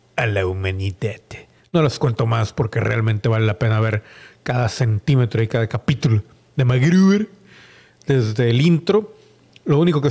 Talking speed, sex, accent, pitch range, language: 155 wpm, male, Mexican, 115-145 Hz, Spanish